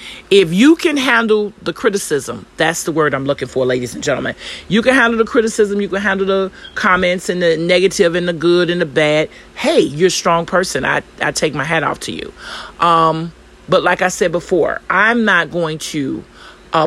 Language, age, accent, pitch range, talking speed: English, 40-59, American, 155-205 Hz, 205 wpm